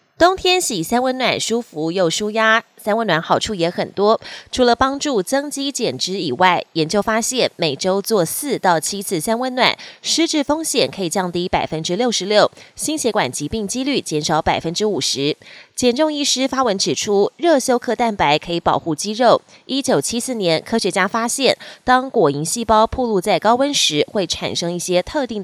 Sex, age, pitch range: female, 20-39, 170-245 Hz